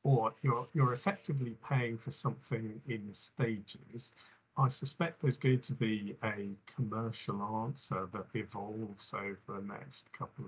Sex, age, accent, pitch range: male, 50-69, British, 110-130 Hz